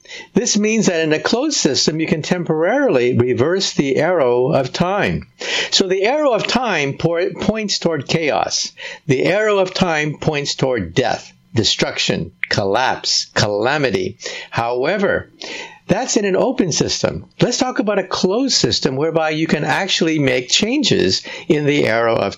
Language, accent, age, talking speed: English, American, 60-79, 145 wpm